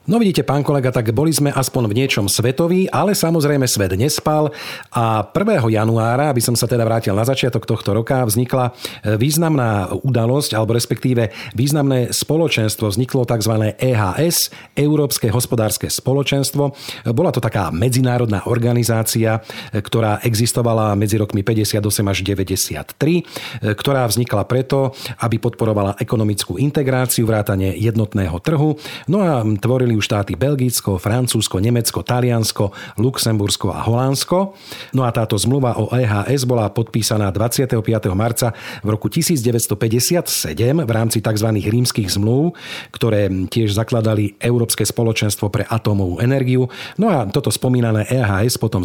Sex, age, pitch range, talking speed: male, 40-59, 105-130 Hz, 130 wpm